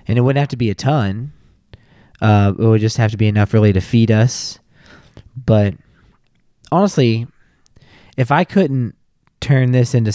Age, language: 20-39, English